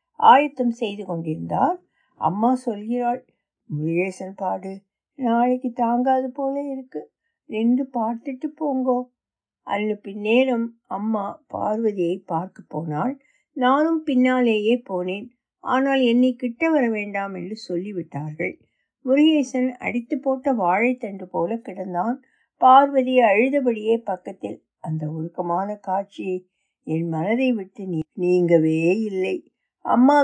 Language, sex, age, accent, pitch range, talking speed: Tamil, female, 60-79, native, 200-265 Hz, 95 wpm